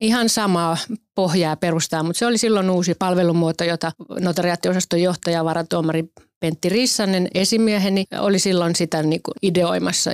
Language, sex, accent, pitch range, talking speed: Finnish, female, native, 170-195 Hz, 125 wpm